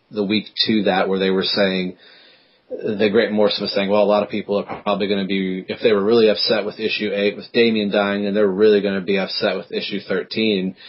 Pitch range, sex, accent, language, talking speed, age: 100-110 Hz, male, American, English, 240 wpm, 30-49